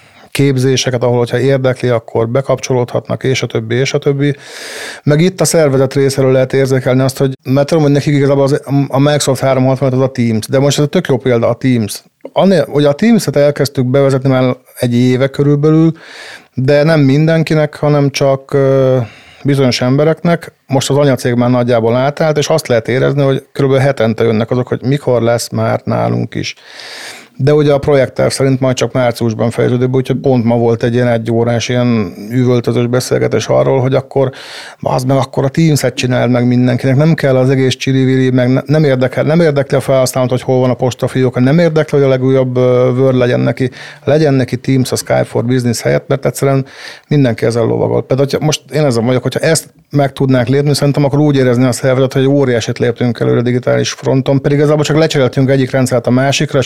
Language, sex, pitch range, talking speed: Hungarian, male, 125-145 Hz, 195 wpm